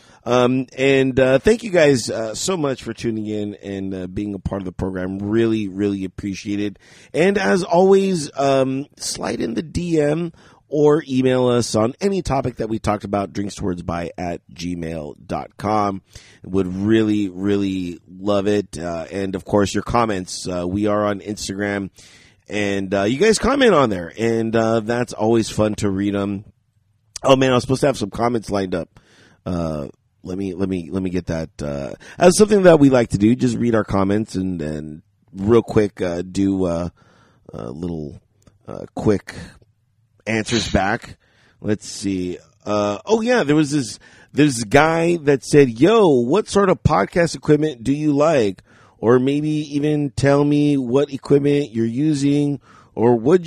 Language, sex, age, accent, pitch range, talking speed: English, male, 30-49, American, 100-140 Hz, 175 wpm